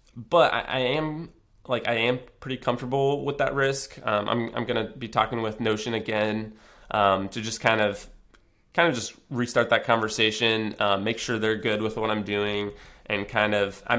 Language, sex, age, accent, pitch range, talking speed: English, male, 20-39, American, 100-115 Hz, 195 wpm